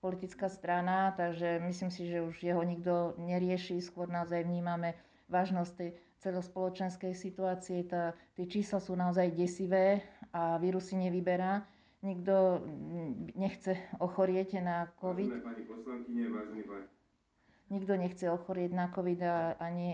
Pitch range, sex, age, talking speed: 170-185 Hz, female, 40-59, 105 wpm